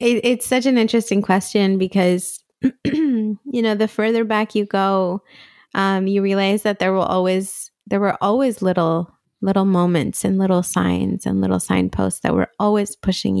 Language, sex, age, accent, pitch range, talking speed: English, female, 20-39, American, 190-220 Hz, 165 wpm